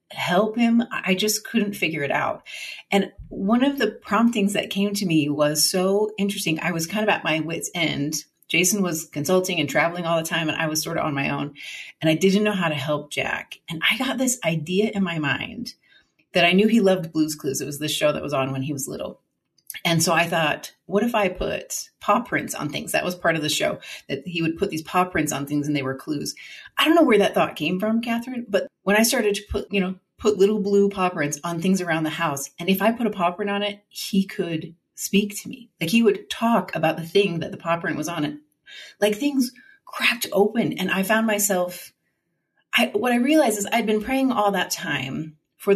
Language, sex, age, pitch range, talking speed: English, female, 30-49, 160-210 Hz, 240 wpm